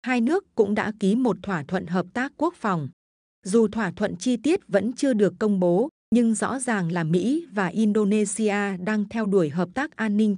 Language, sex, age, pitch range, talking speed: Vietnamese, female, 20-39, 190-230 Hz, 210 wpm